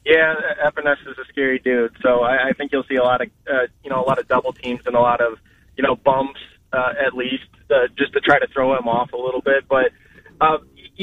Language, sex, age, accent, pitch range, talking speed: English, male, 20-39, American, 125-145 Hz, 250 wpm